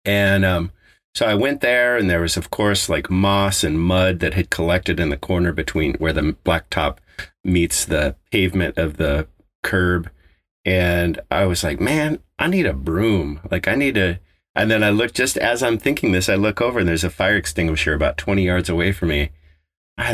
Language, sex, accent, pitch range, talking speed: English, male, American, 85-100 Hz, 205 wpm